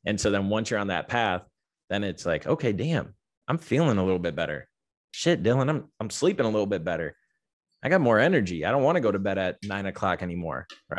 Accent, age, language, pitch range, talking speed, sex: American, 20-39, English, 95-110 Hz, 240 wpm, male